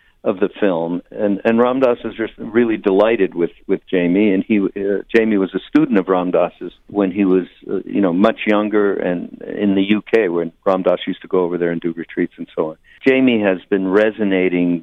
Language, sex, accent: English, male, American